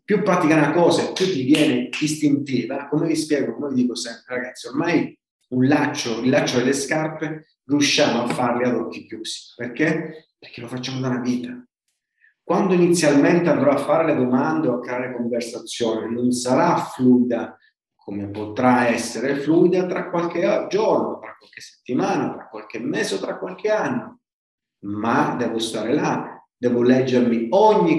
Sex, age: male, 40-59